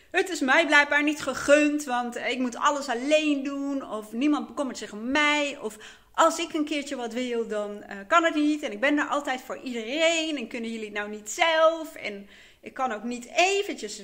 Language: Dutch